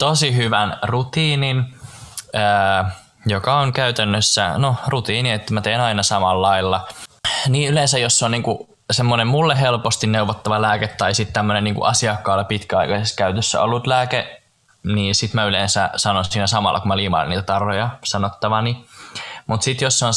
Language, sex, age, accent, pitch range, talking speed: Finnish, male, 20-39, native, 100-115 Hz, 150 wpm